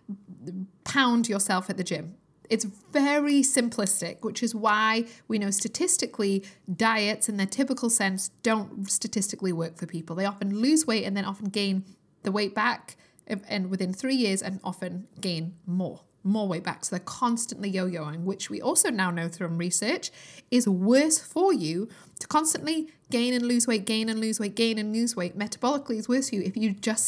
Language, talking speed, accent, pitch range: English, 185 wpm, British, 190-245 Hz